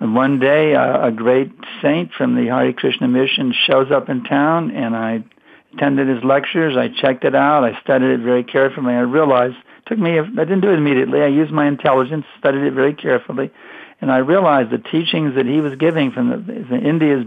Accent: American